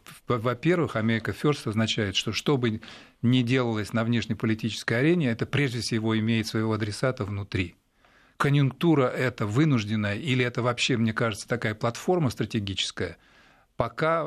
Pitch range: 110-130 Hz